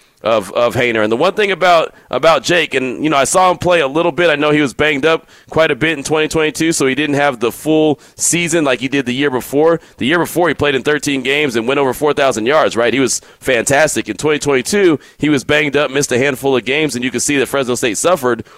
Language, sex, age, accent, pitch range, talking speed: English, male, 30-49, American, 130-175 Hz, 260 wpm